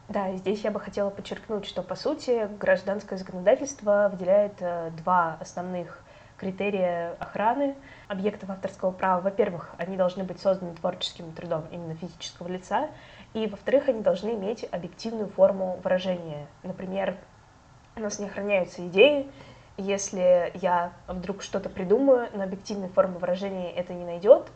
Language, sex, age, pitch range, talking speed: Russian, female, 20-39, 180-205 Hz, 135 wpm